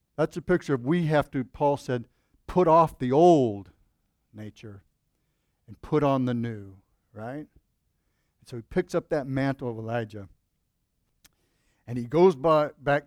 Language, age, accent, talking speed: English, 50-69, American, 145 wpm